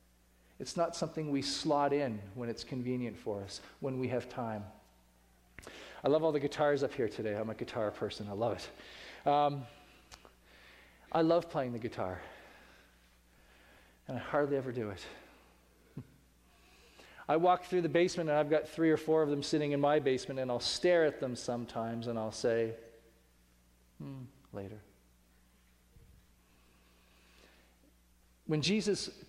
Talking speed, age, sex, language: 150 wpm, 40-59, male, English